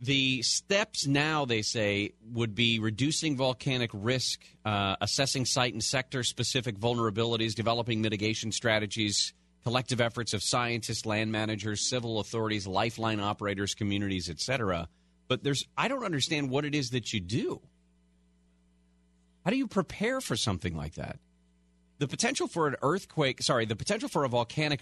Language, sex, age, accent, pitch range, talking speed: English, male, 40-59, American, 105-140 Hz, 150 wpm